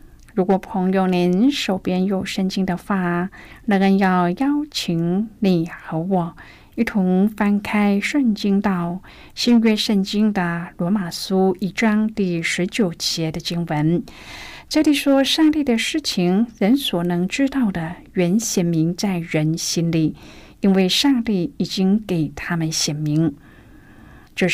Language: Chinese